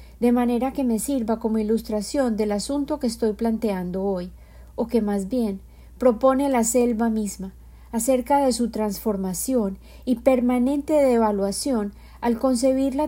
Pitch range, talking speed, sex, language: 210-260 Hz, 140 wpm, female, Spanish